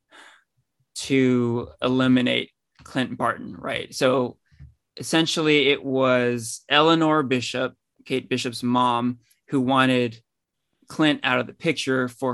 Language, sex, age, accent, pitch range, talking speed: English, male, 20-39, American, 130-175 Hz, 105 wpm